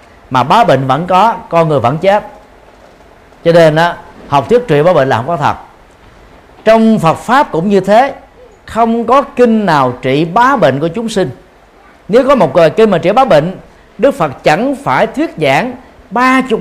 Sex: male